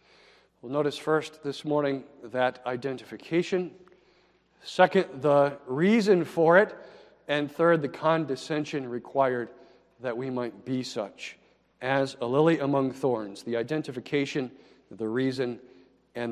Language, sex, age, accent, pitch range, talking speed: English, male, 50-69, American, 125-165 Hz, 120 wpm